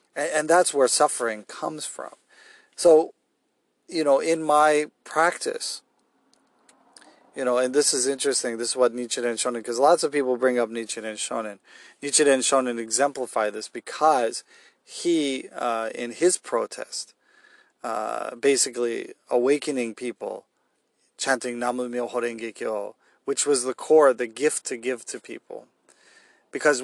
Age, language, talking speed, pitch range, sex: 40-59, English, 140 wpm, 120-150 Hz, male